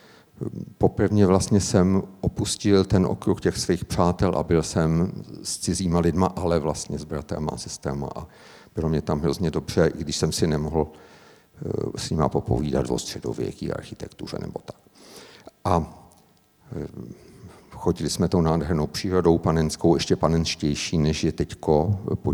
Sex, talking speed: male, 140 wpm